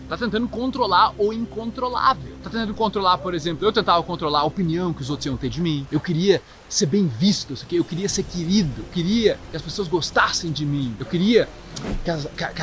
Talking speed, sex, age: 210 wpm, male, 20-39